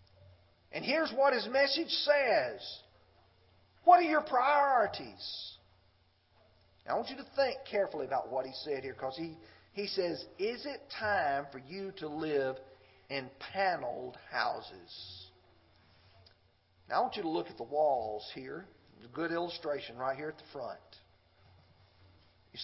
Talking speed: 150 wpm